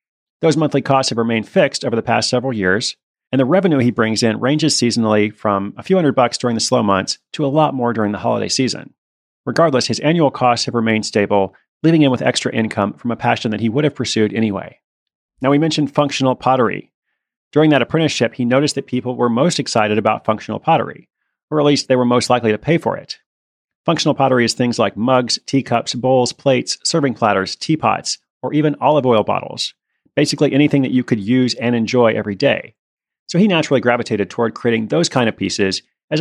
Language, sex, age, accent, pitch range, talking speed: English, male, 30-49, American, 110-145 Hz, 205 wpm